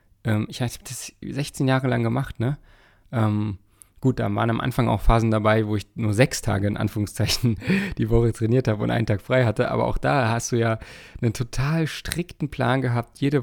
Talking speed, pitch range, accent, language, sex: 200 wpm, 110-125 Hz, German, German, male